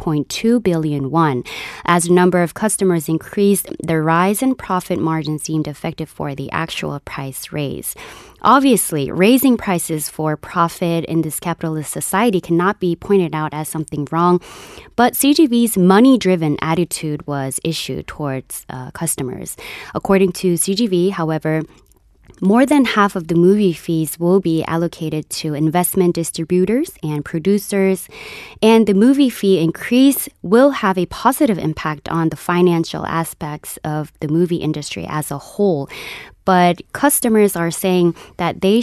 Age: 20-39